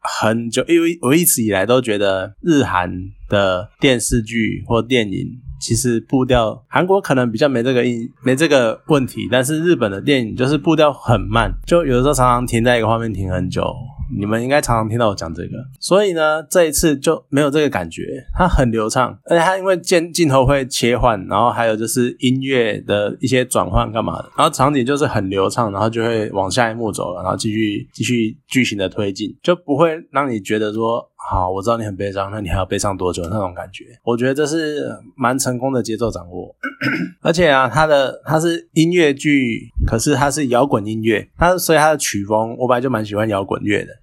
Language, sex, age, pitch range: Chinese, male, 20-39, 105-140 Hz